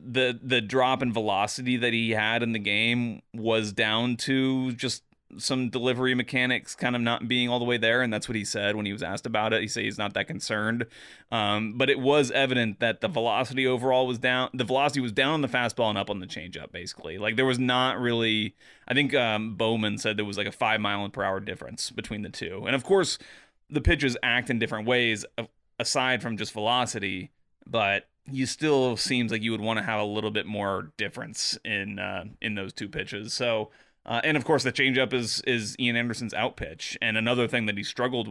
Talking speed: 220 wpm